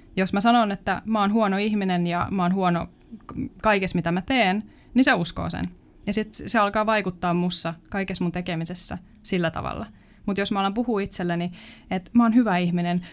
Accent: native